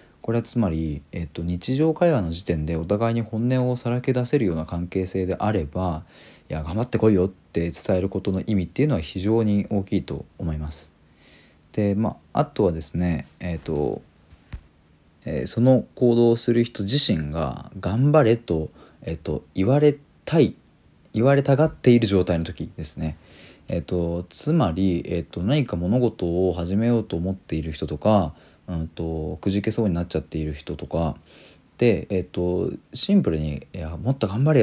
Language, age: Japanese, 40-59